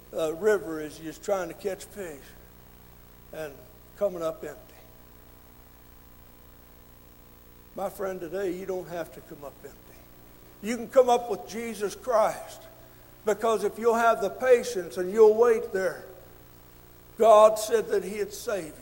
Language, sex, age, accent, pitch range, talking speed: English, male, 60-79, American, 185-260 Hz, 140 wpm